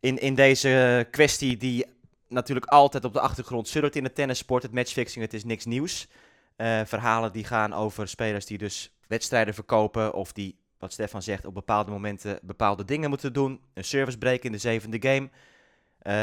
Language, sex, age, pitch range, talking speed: Dutch, male, 20-39, 105-125 Hz, 185 wpm